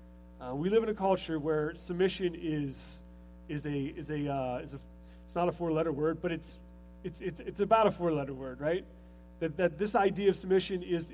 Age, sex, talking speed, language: 30-49, male, 215 wpm, English